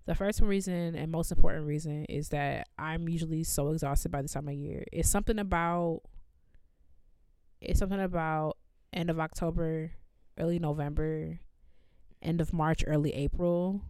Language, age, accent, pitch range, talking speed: English, 20-39, American, 135-165 Hz, 145 wpm